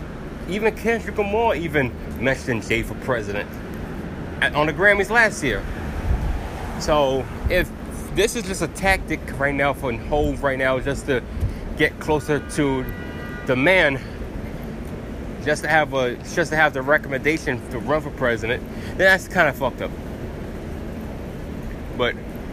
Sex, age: male, 20-39